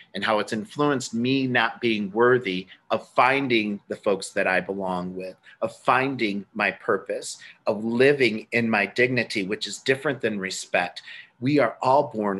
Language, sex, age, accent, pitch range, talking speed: English, male, 40-59, American, 105-130 Hz, 165 wpm